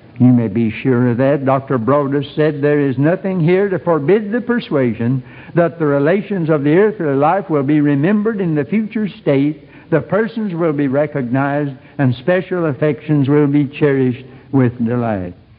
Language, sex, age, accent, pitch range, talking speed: English, male, 60-79, American, 125-180 Hz, 170 wpm